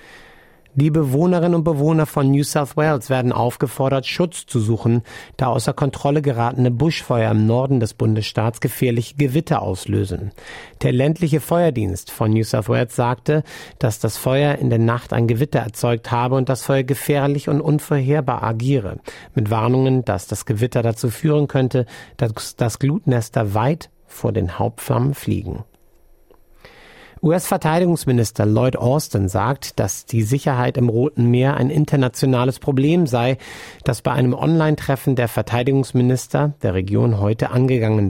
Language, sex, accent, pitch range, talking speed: German, male, German, 115-145 Hz, 140 wpm